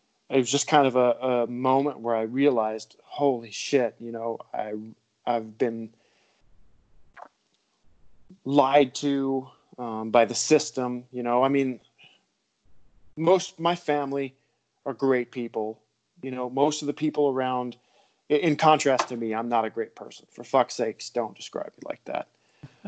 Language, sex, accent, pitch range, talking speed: English, male, American, 115-140 Hz, 155 wpm